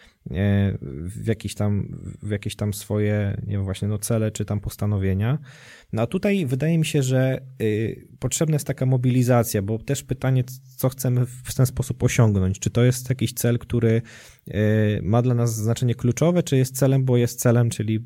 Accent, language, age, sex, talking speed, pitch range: native, Polish, 20-39, male, 175 wpm, 110-135 Hz